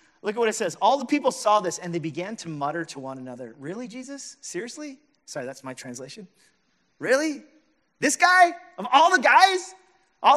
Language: English